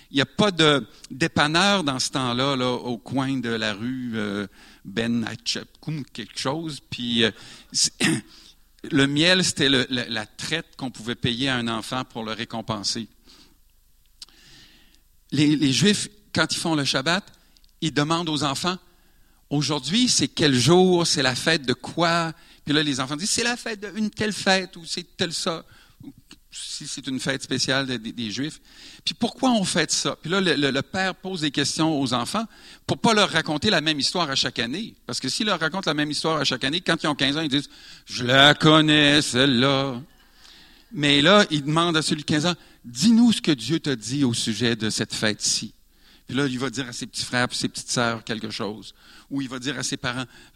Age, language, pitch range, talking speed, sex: 50-69, French, 125-165 Hz, 210 wpm, male